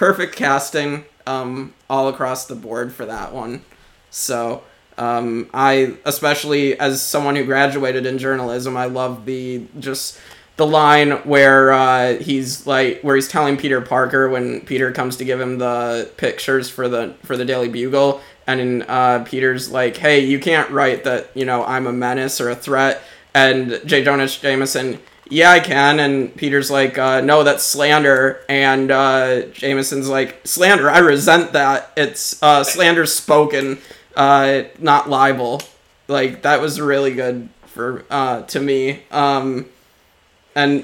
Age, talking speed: 20-39, 155 wpm